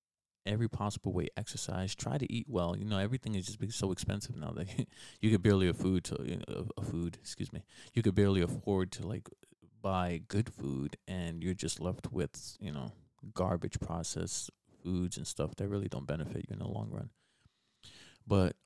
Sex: male